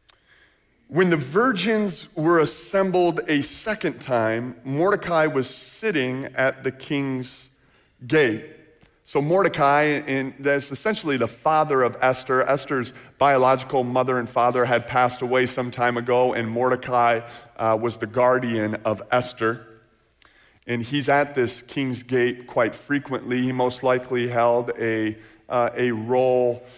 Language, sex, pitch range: English, male, 120-145 Hz